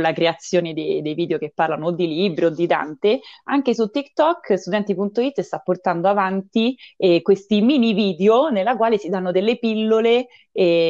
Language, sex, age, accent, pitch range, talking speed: Italian, female, 20-39, native, 165-200 Hz, 170 wpm